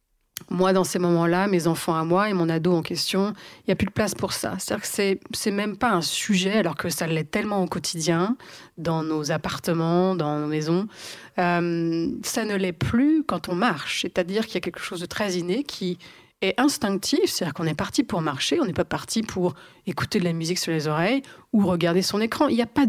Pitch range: 170-225 Hz